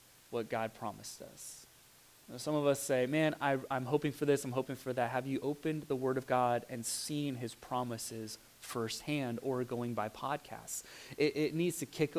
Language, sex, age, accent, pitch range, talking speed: English, male, 30-49, American, 140-195 Hz, 185 wpm